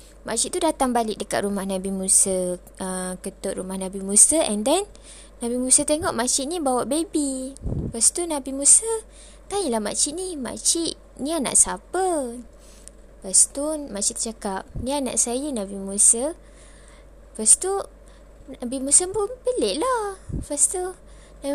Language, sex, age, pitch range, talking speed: Malay, female, 20-39, 205-310 Hz, 140 wpm